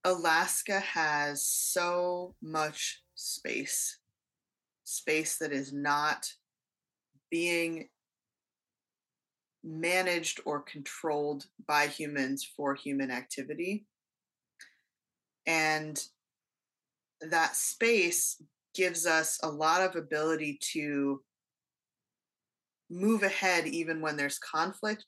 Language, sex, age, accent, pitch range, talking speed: English, female, 20-39, American, 140-170 Hz, 80 wpm